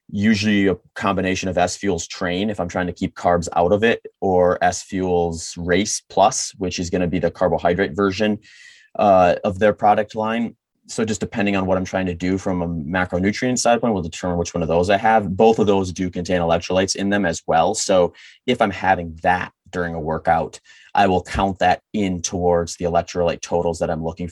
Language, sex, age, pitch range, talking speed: English, male, 30-49, 90-100 Hz, 210 wpm